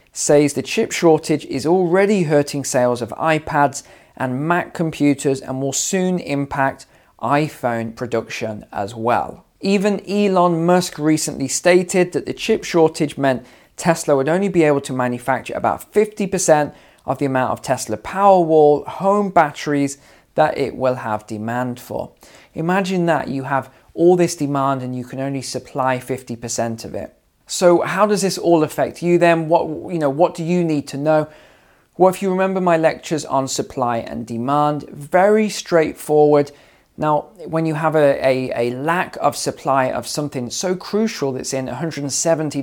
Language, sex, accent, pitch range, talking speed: English, male, British, 130-175 Hz, 160 wpm